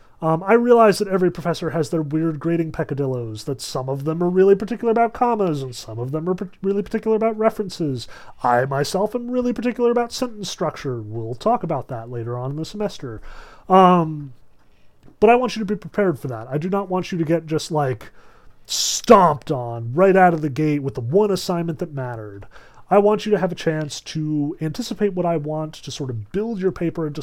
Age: 30-49